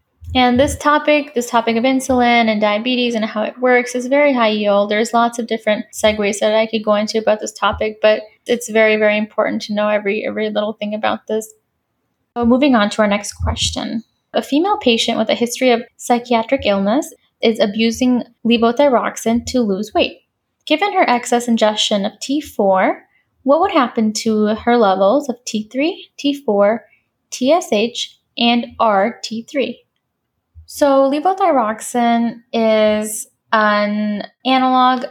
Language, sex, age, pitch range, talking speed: English, female, 10-29, 215-250 Hz, 150 wpm